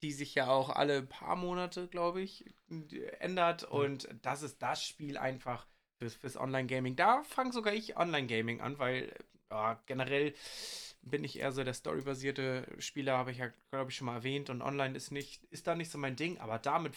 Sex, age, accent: male, 20-39, German